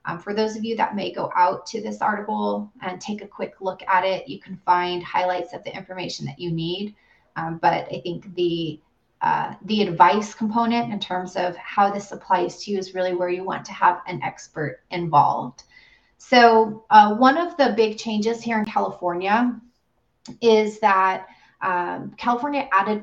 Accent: American